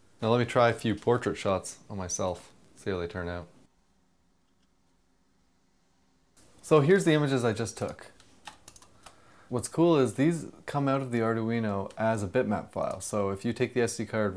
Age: 20-39